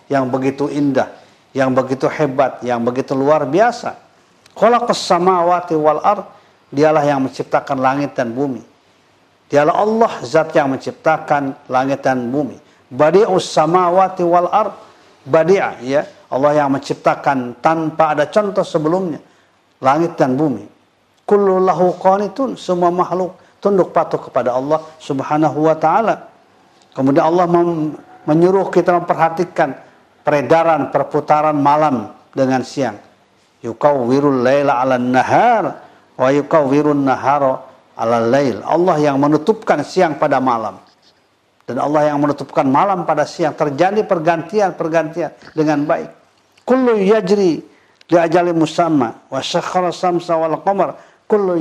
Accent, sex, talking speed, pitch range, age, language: native, male, 115 wpm, 135-180 Hz, 50-69, Indonesian